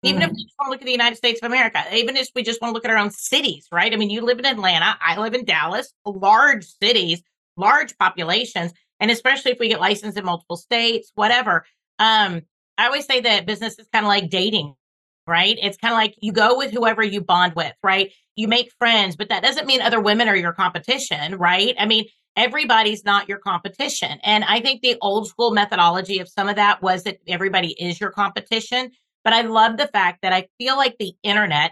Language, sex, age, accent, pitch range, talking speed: English, female, 40-59, American, 195-235 Hz, 225 wpm